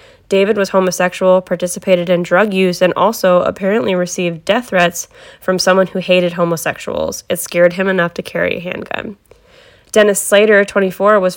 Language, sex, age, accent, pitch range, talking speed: English, female, 10-29, American, 175-205 Hz, 160 wpm